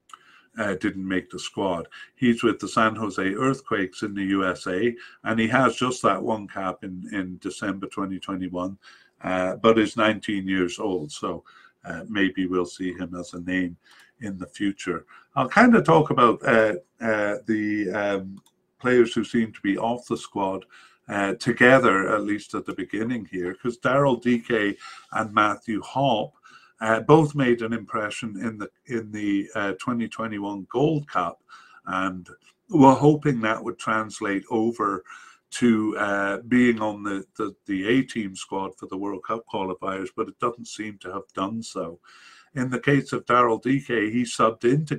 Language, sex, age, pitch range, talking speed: English, male, 50-69, 95-120 Hz, 165 wpm